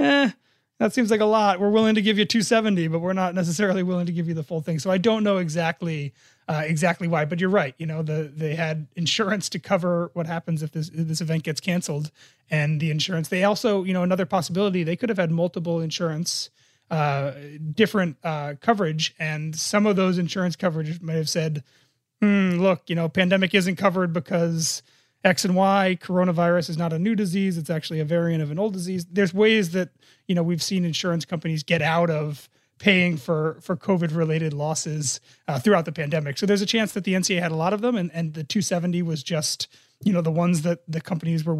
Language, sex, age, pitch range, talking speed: English, male, 30-49, 155-190 Hz, 220 wpm